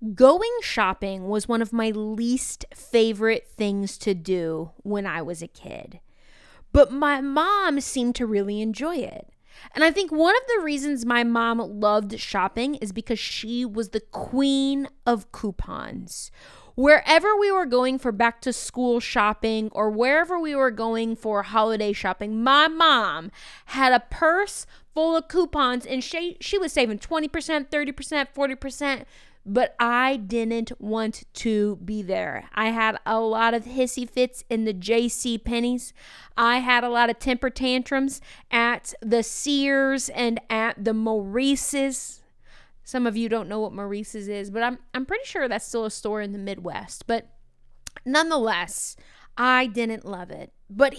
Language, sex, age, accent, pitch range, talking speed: English, female, 20-39, American, 220-275 Hz, 160 wpm